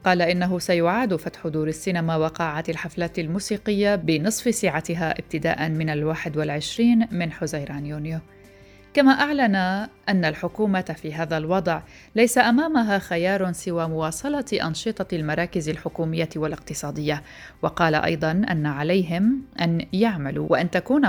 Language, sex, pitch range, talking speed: Arabic, female, 160-195 Hz, 120 wpm